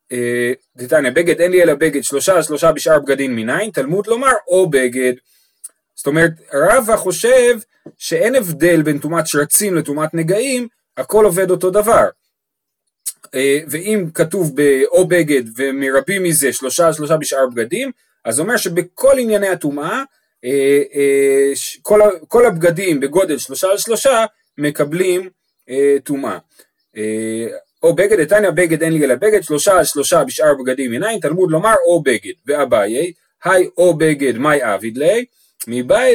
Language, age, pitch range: Hebrew, 30-49, 145-210 Hz